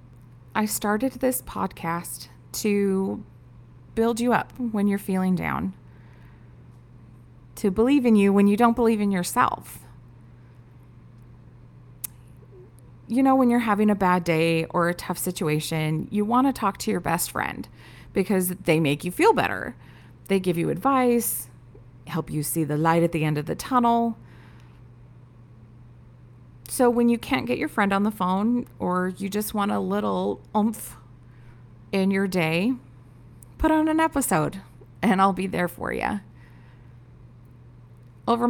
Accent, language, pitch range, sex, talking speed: American, English, 125-200 Hz, female, 145 wpm